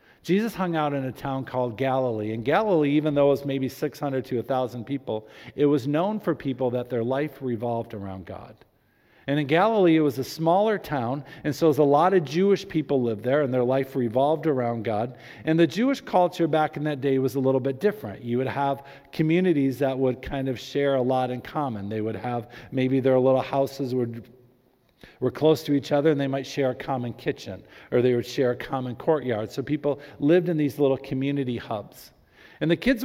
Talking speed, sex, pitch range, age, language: 210 wpm, male, 125-150 Hz, 50-69, English